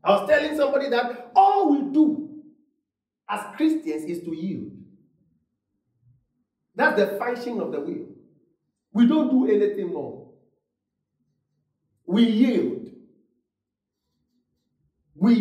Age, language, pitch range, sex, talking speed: 50-69, English, 170-275 Hz, male, 110 wpm